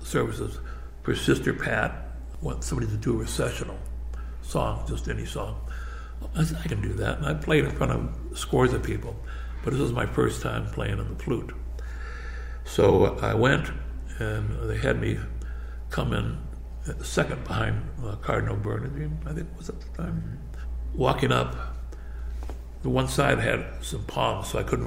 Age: 60-79